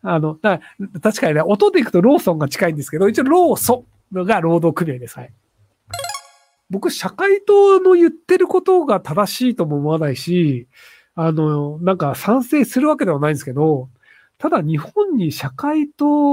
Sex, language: male, Japanese